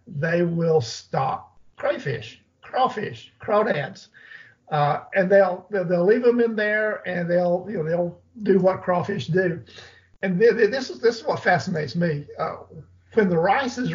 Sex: male